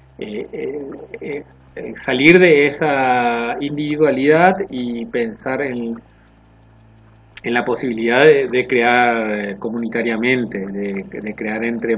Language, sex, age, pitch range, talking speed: Spanish, male, 30-49, 105-130 Hz, 105 wpm